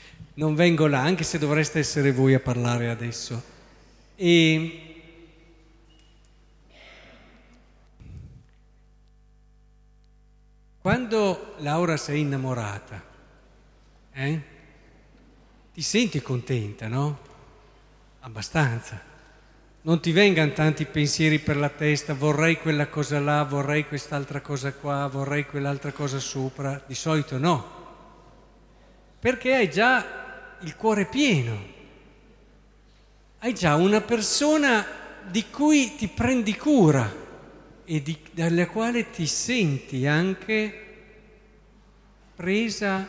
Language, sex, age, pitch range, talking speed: Italian, male, 50-69, 145-210 Hz, 95 wpm